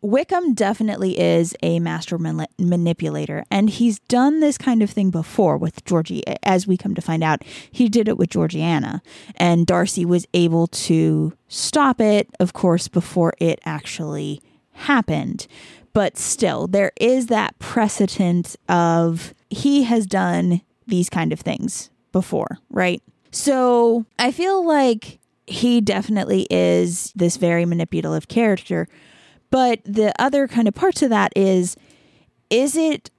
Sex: female